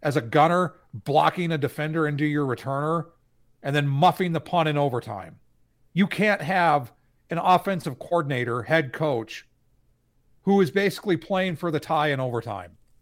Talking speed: 150 wpm